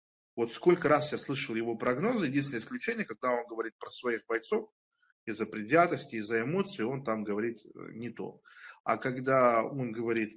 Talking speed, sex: 160 wpm, male